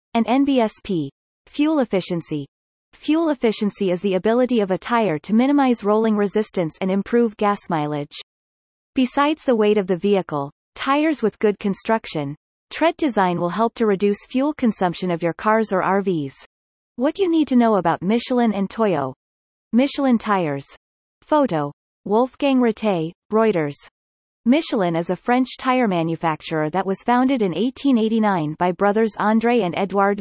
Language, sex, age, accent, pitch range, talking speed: English, female, 30-49, American, 175-240 Hz, 145 wpm